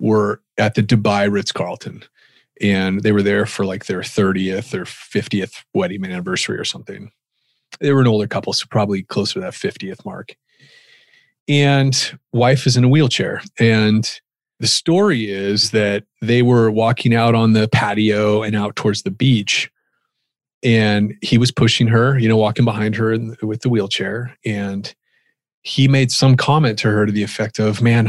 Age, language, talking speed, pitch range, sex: 30-49, English, 170 wpm, 105-140 Hz, male